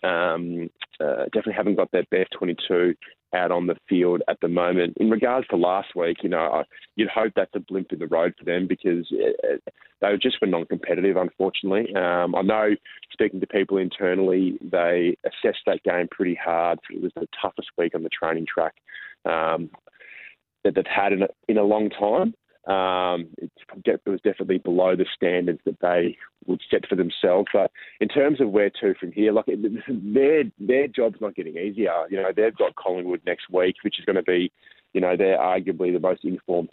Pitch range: 85-105 Hz